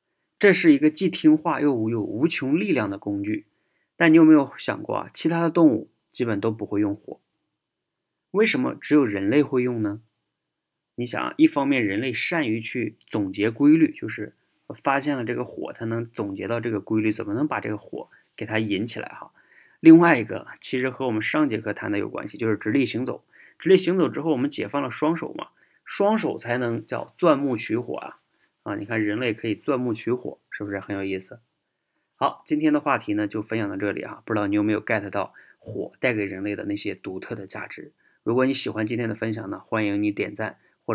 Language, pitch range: Chinese, 105-150 Hz